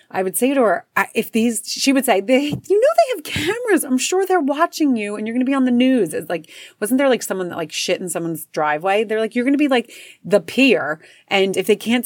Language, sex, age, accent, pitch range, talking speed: English, female, 30-49, American, 180-250 Hz, 270 wpm